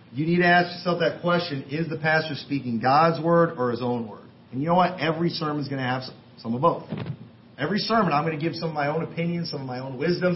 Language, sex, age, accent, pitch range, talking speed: English, male, 40-59, American, 140-180 Hz, 270 wpm